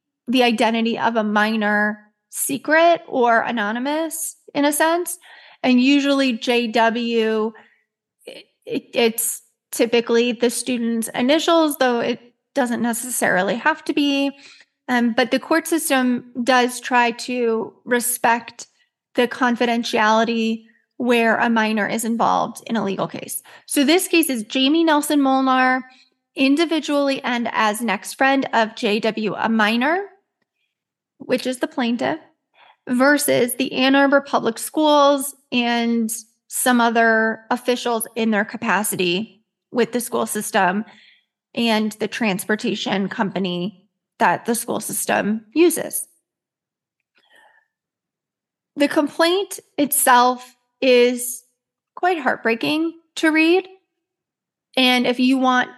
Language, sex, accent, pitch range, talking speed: English, female, American, 230-280 Hz, 110 wpm